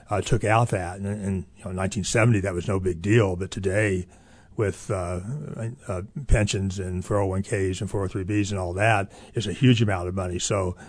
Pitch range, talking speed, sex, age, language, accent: 95-115 Hz, 195 wpm, male, 40-59, English, American